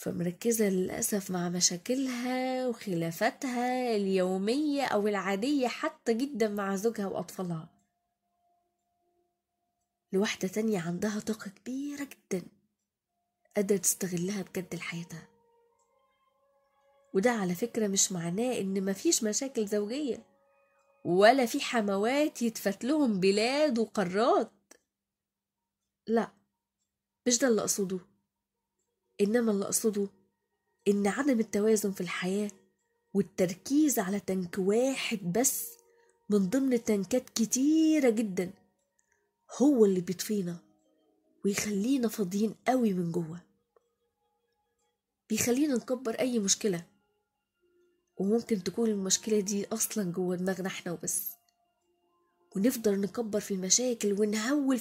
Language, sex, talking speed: Arabic, female, 95 wpm